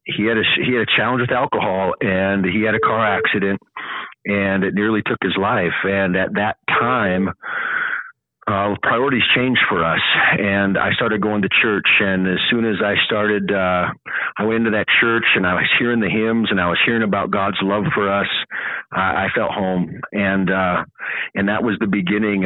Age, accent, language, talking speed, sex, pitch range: 40-59, American, English, 200 wpm, male, 95-105 Hz